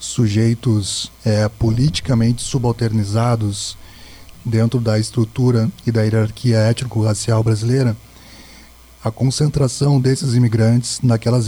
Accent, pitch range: Brazilian, 110-130 Hz